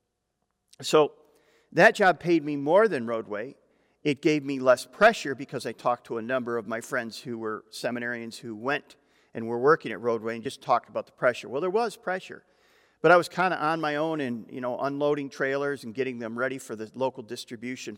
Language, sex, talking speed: English, male, 210 wpm